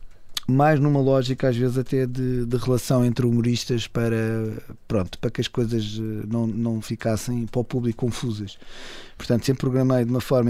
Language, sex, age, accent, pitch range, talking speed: Portuguese, male, 20-39, Portuguese, 115-130 Hz, 170 wpm